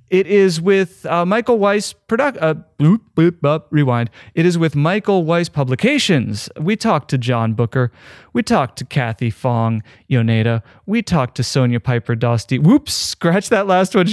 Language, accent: English, American